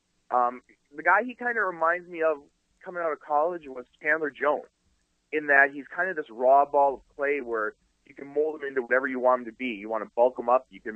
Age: 30-49